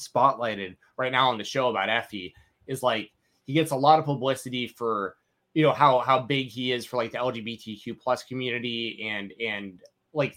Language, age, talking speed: English, 20-39, 190 wpm